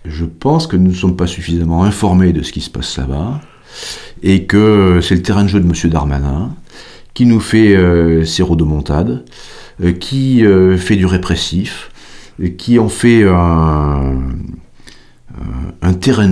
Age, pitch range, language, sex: 40-59, 80-100 Hz, French, male